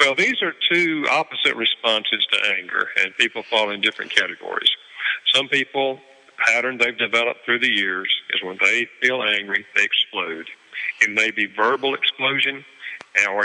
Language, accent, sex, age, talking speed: English, American, male, 50-69, 160 wpm